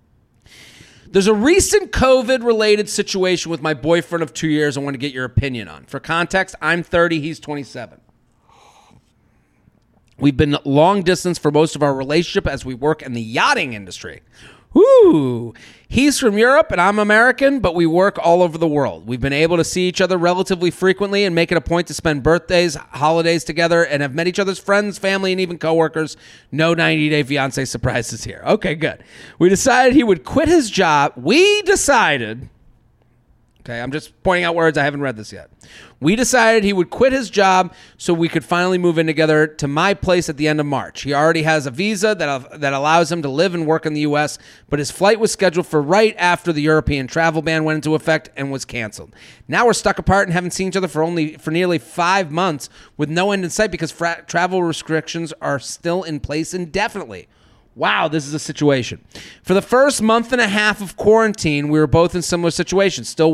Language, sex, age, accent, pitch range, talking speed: English, male, 30-49, American, 150-190 Hz, 205 wpm